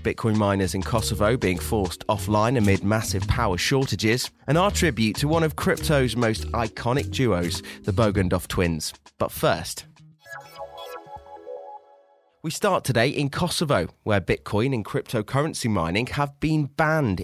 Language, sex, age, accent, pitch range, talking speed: English, male, 30-49, British, 100-135 Hz, 135 wpm